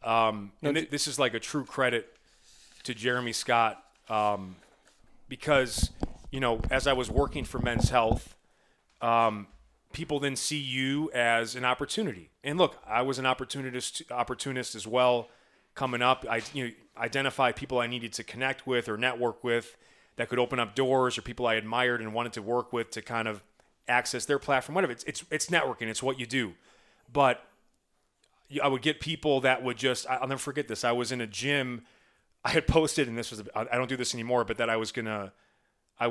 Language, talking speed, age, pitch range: English, 195 wpm, 30-49, 115-140 Hz